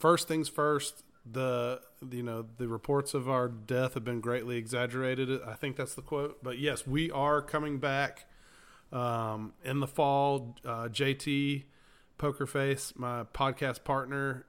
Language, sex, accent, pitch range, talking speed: English, male, American, 120-145 Hz, 150 wpm